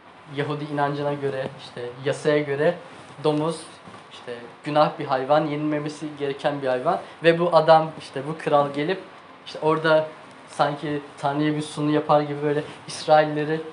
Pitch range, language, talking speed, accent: 145-165 Hz, Turkish, 140 wpm, native